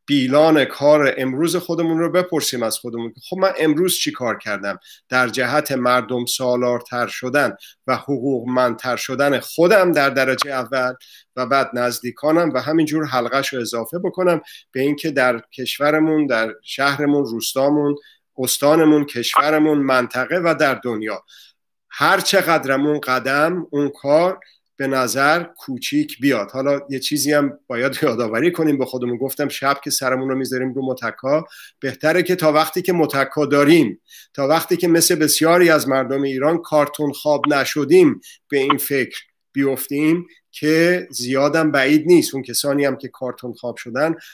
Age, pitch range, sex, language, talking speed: 50-69, 125-155 Hz, male, Persian, 145 wpm